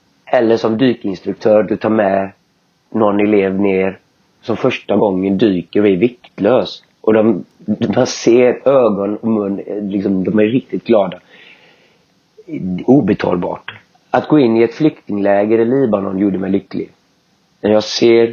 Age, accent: 30-49, native